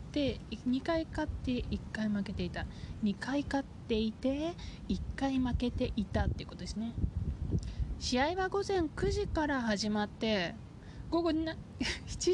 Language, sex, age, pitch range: Japanese, female, 20-39, 195-275 Hz